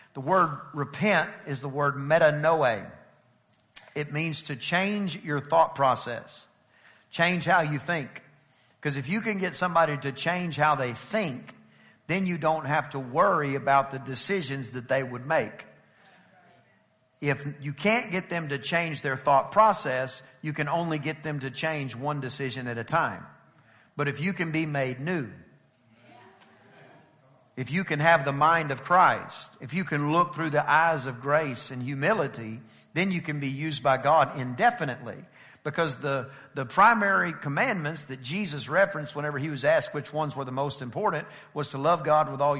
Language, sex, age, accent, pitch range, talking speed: English, male, 50-69, American, 135-170 Hz, 170 wpm